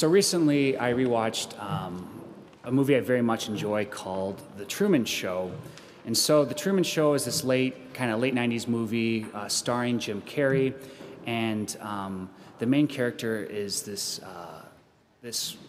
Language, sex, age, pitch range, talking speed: English, male, 30-49, 105-135 Hz, 155 wpm